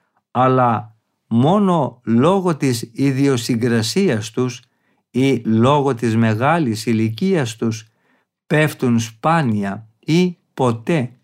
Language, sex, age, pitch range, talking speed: Greek, male, 50-69, 115-150 Hz, 85 wpm